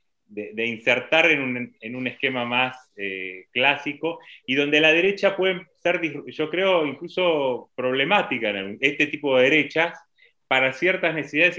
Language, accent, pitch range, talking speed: Spanish, Argentinian, 110-155 Hz, 150 wpm